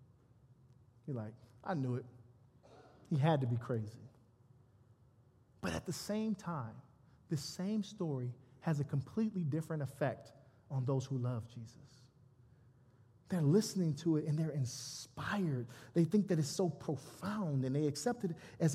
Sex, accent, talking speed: male, American, 145 wpm